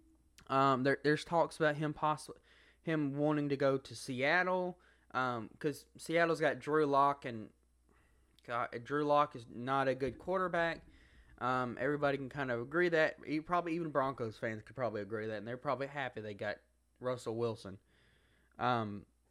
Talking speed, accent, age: 165 wpm, American, 20-39